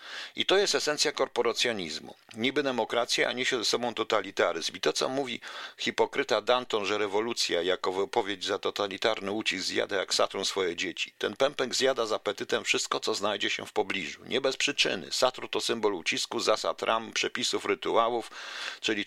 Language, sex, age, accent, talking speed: Polish, male, 50-69, native, 165 wpm